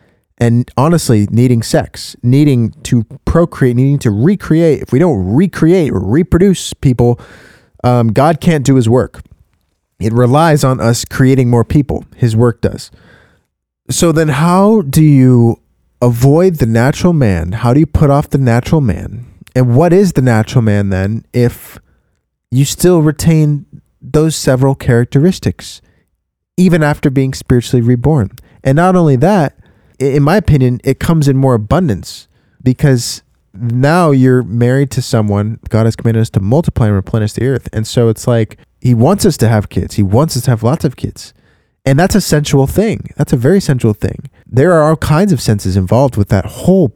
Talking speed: 175 wpm